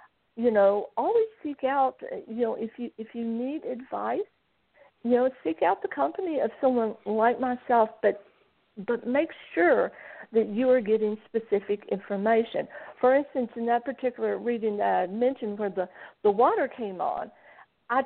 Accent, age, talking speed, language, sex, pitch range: American, 50-69, 165 wpm, English, female, 215-265 Hz